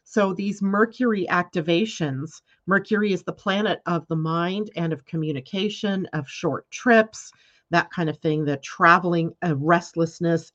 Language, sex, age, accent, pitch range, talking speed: English, female, 40-59, American, 165-210 Hz, 140 wpm